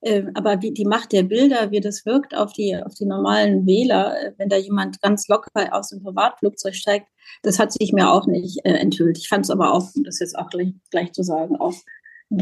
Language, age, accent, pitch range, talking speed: German, 30-49, German, 185-230 Hz, 215 wpm